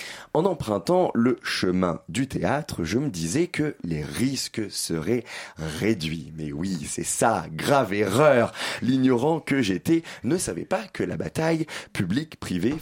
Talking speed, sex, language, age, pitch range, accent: 140 wpm, male, French, 30-49, 80-135 Hz, French